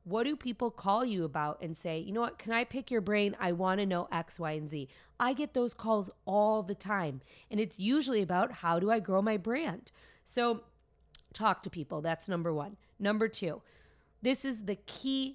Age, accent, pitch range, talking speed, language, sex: 30-49, American, 165-230 Hz, 210 wpm, English, female